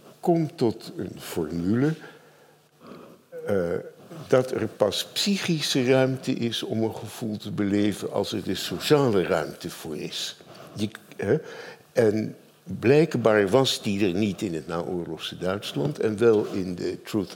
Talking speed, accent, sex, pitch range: 140 wpm, Dutch, male, 105-150 Hz